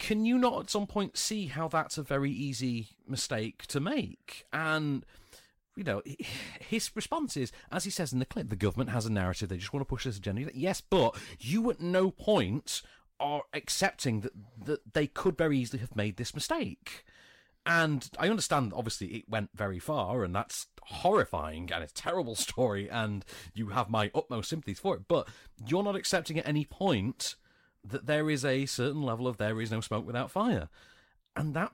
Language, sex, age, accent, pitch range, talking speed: English, male, 30-49, British, 105-160 Hz, 195 wpm